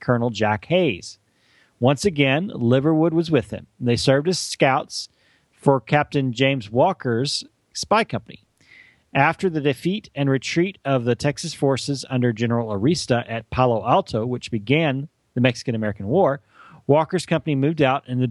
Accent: American